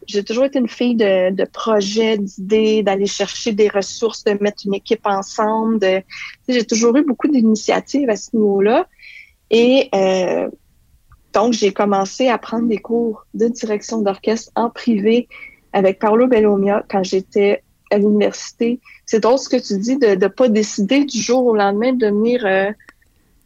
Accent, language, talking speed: Canadian, French, 165 wpm